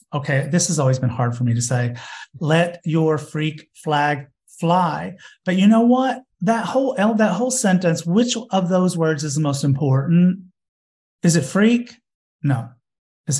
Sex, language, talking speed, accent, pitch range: male, English, 165 wpm, American, 150-190 Hz